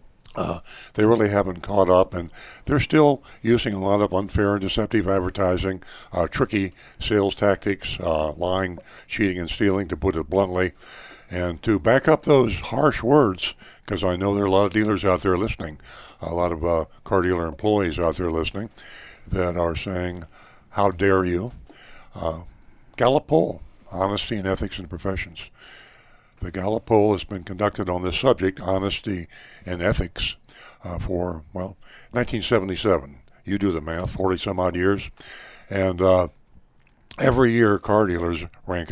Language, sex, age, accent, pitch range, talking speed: English, male, 60-79, American, 90-105 Hz, 155 wpm